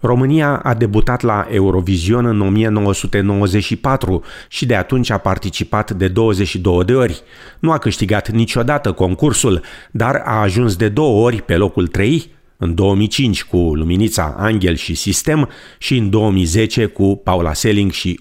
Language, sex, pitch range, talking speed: Romanian, male, 90-115 Hz, 145 wpm